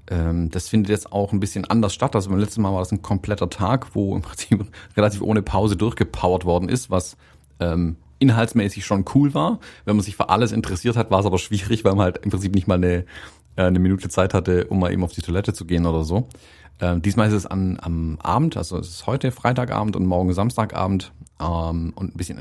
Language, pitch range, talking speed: German, 90-115 Hz, 225 wpm